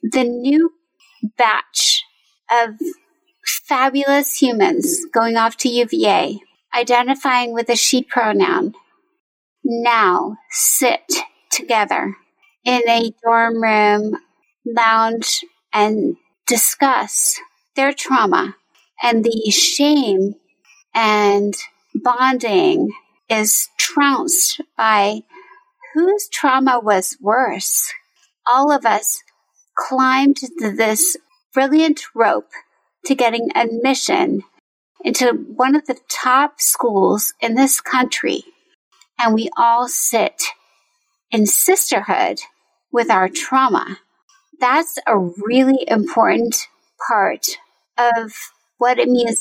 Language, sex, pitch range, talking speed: English, female, 230-330 Hz, 90 wpm